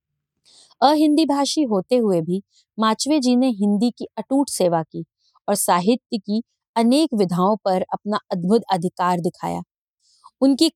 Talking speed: 135 wpm